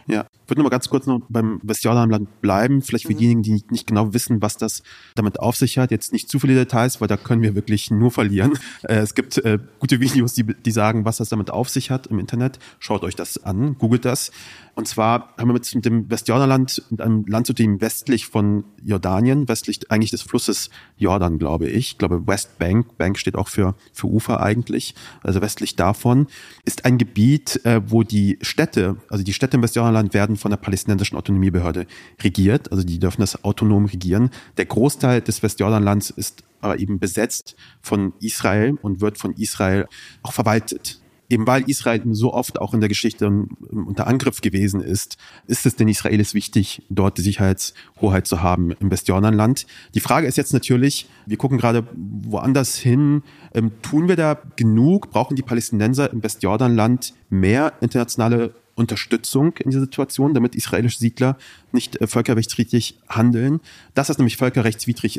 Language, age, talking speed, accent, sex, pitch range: German, 30-49, 175 wpm, German, male, 105-125 Hz